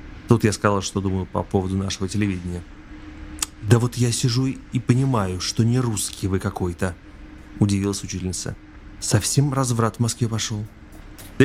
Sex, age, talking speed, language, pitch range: male, 30-49, 145 wpm, Russian, 95-130 Hz